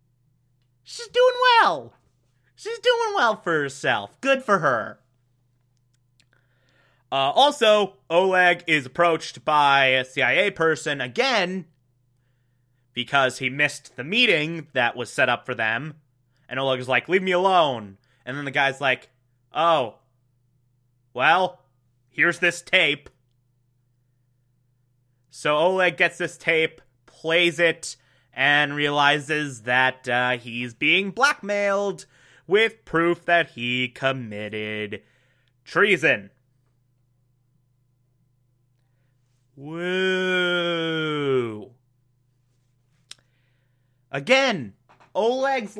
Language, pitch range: English, 125-180 Hz